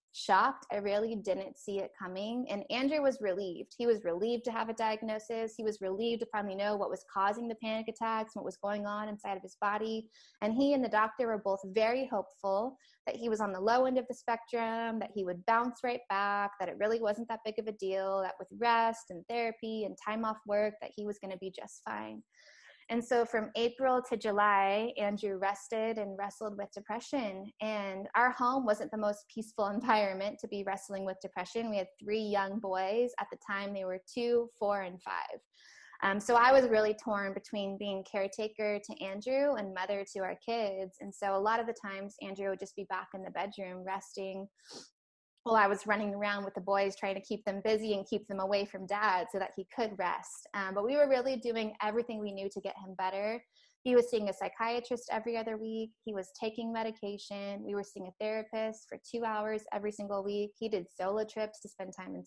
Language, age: English, 20-39